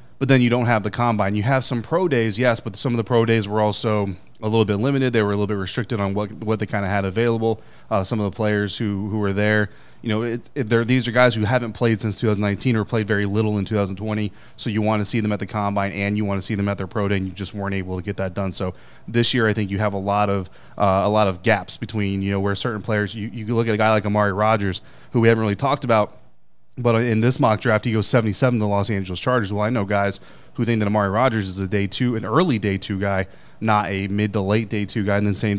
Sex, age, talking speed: male, 30-49, 290 wpm